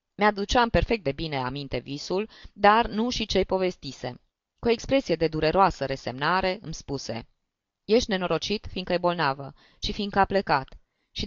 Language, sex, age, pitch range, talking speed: Romanian, female, 20-39, 145-205 Hz, 155 wpm